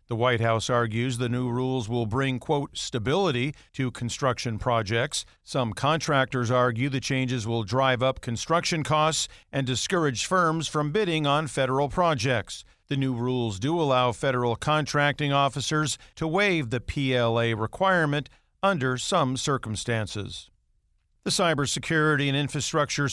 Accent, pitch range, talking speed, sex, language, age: American, 125-160 Hz, 135 wpm, male, English, 50-69